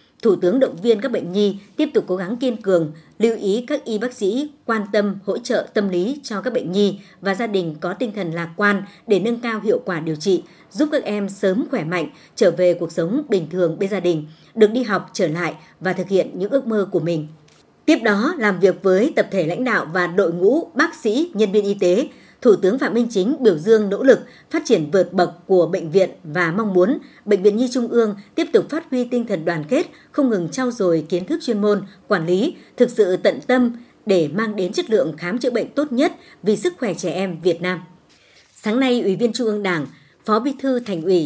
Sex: male